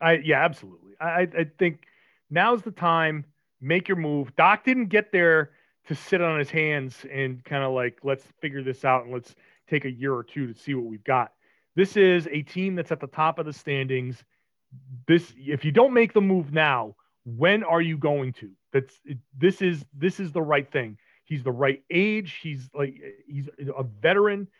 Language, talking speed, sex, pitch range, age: English, 200 wpm, male, 135-185 Hz, 30-49